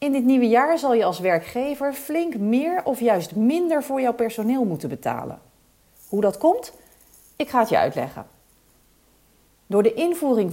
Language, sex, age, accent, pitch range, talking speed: Dutch, female, 40-59, Dutch, 170-270 Hz, 165 wpm